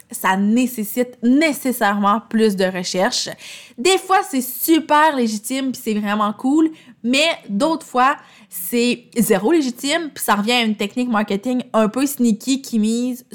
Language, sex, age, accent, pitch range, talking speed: French, female, 20-39, Canadian, 205-260 Hz, 150 wpm